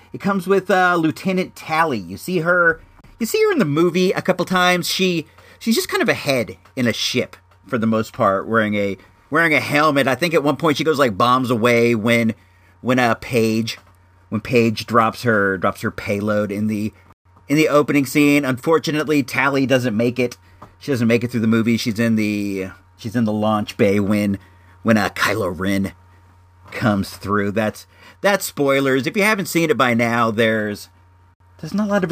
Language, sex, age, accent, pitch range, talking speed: English, male, 40-59, American, 100-150 Hz, 200 wpm